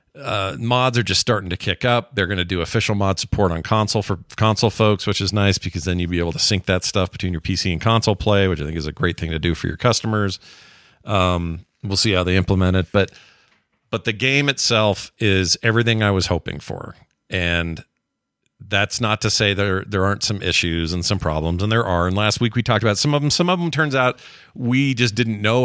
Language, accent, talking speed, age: English, American, 240 wpm, 40-59